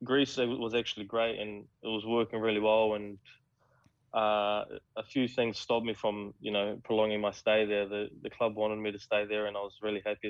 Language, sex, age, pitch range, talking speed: English, male, 20-39, 105-125 Hz, 220 wpm